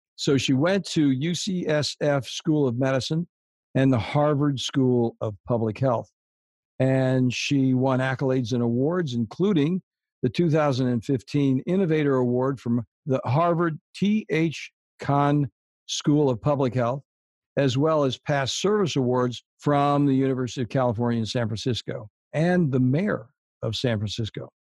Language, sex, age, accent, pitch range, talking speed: English, male, 60-79, American, 125-155 Hz, 135 wpm